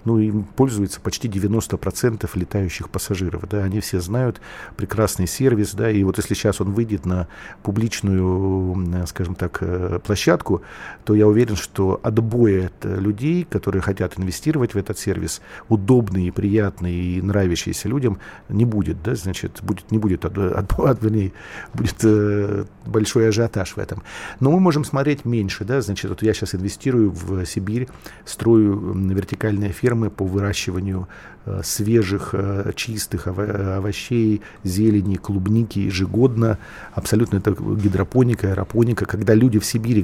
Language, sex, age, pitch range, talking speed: Russian, male, 50-69, 95-115 Hz, 135 wpm